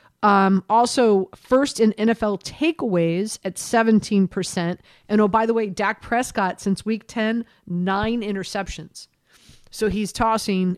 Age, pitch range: 40-59, 190-225 Hz